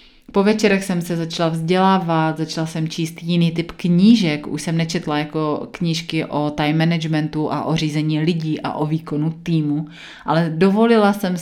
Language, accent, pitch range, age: Czech, native, 155-180 Hz, 30-49